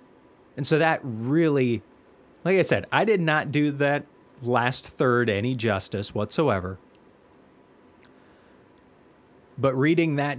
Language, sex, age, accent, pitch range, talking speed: English, male, 30-49, American, 110-145 Hz, 115 wpm